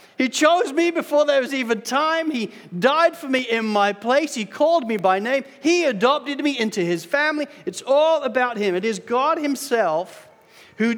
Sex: male